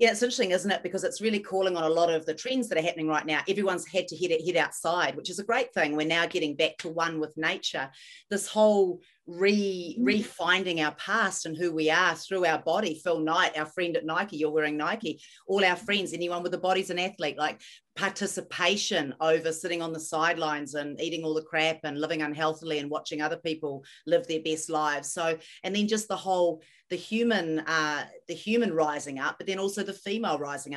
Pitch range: 155-190 Hz